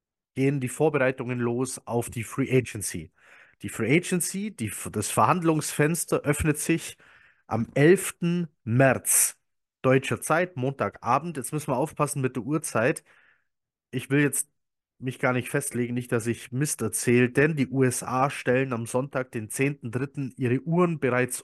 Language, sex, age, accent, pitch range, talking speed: German, male, 30-49, German, 115-145 Hz, 145 wpm